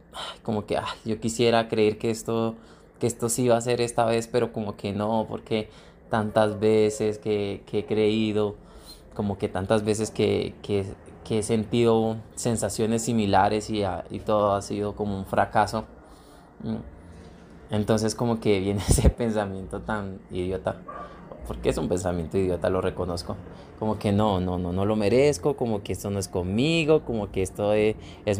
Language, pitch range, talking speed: Spanish, 100-120 Hz, 165 wpm